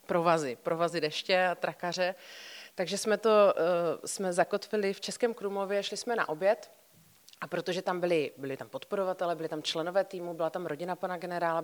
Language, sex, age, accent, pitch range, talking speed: Czech, female, 30-49, native, 160-190 Hz, 170 wpm